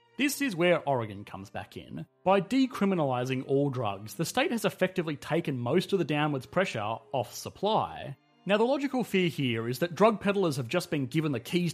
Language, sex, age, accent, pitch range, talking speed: English, male, 30-49, Australian, 120-175 Hz, 195 wpm